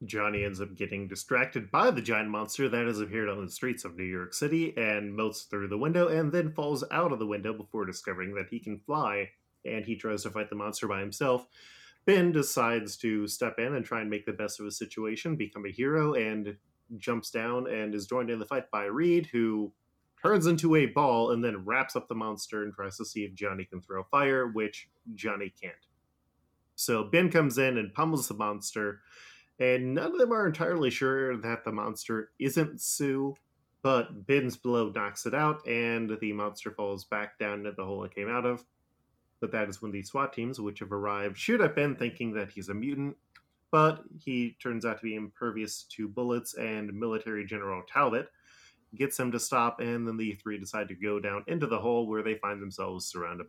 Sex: male